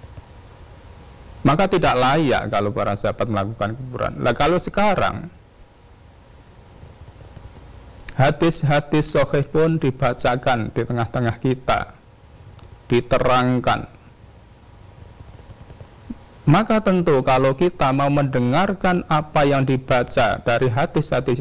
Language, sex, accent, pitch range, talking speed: Indonesian, male, native, 100-135 Hz, 85 wpm